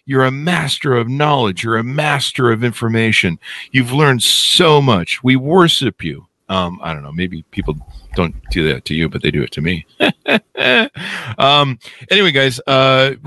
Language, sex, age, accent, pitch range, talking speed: English, male, 50-69, American, 95-135 Hz, 175 wpm